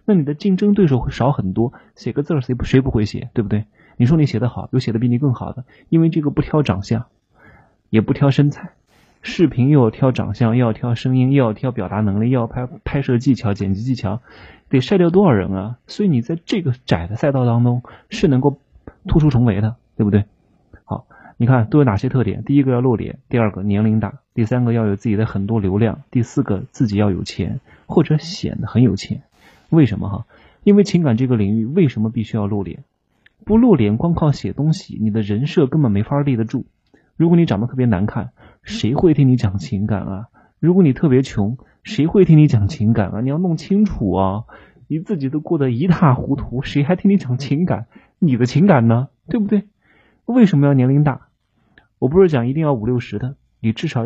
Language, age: Chinese, 30-49